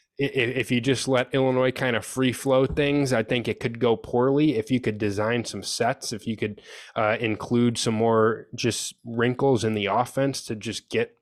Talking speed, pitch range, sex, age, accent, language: 200 wpm, 105-125 Hz, male, 20-39, American, English